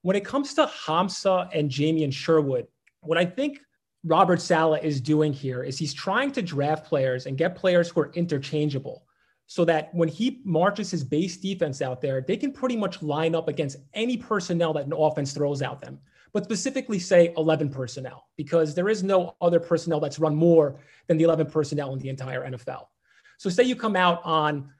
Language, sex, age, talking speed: English, male, 30-49, 200 wpm